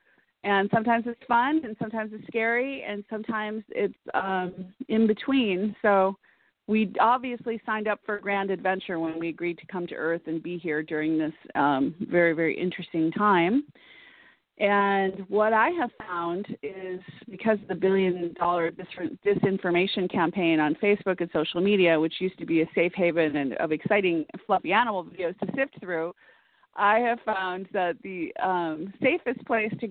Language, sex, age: English, female, 40-59